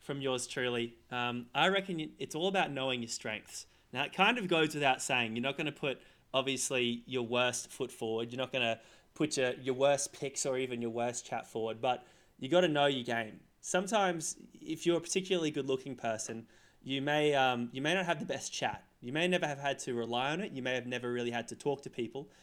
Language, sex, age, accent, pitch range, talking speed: English, male, 20-39, Australian, 120-155 Hz, 225 wpm